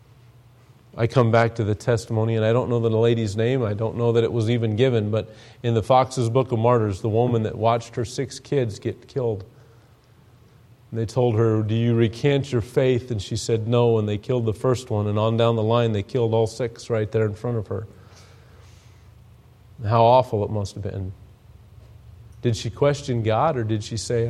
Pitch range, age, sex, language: 110-125 Hz, 40-59, male, English